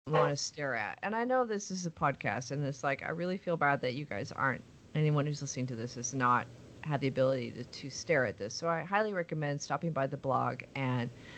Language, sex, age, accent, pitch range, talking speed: English, female, 30-49, American, 135-175 Hz, 245 wpm